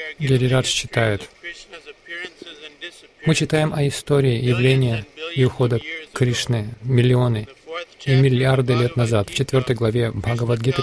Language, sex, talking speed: Russian, male, 105 wpm